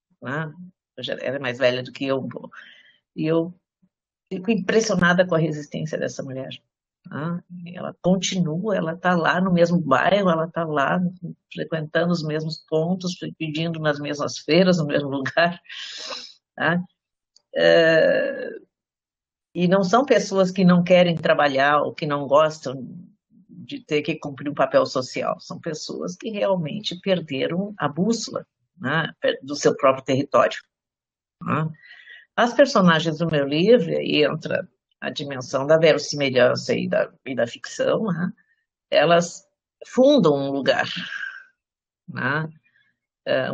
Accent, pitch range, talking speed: Brazilian, 145-190 Hz, 130 wpm